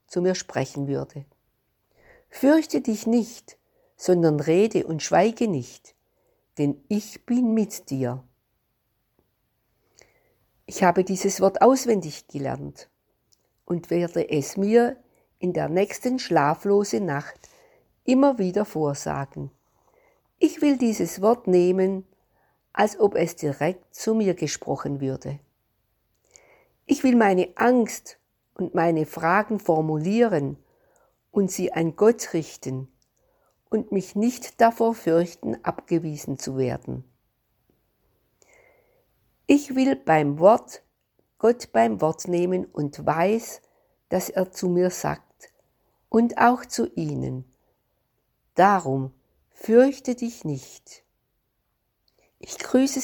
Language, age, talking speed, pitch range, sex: German, 60-79, 105 wpm, 150-235 Hz, female